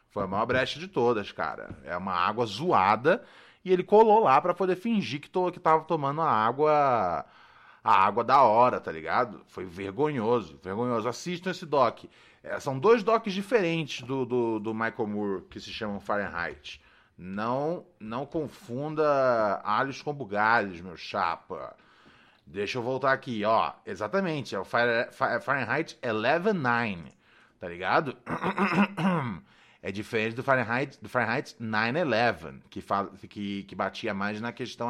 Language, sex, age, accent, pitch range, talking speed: Portuguese, male, 20-39, Brazilian, 105-150 Hz, 150 wpm